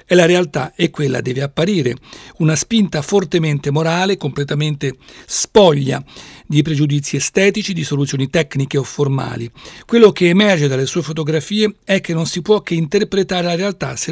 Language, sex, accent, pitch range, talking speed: Italian, male, native, 140-180 Hz, 155 wpm